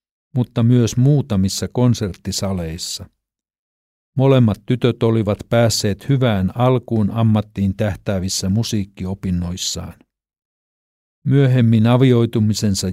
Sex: male